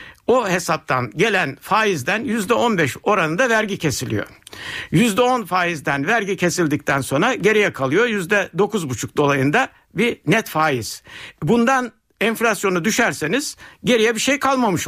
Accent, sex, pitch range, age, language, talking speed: native, male, 155-235 Hz, 60-79, Turkish, 130 wpm